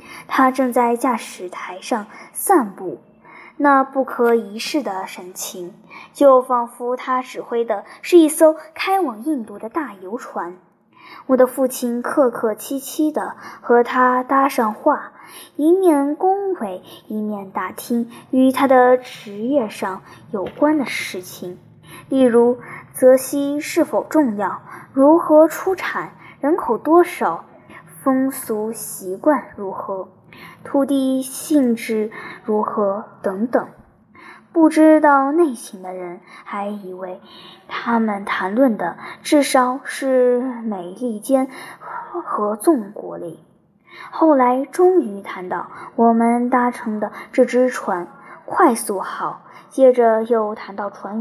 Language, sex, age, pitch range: Chinese, male, 10-29, 210-275 Hz